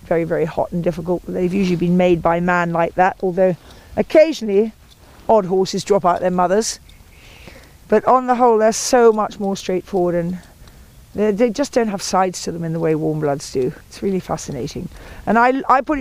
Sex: female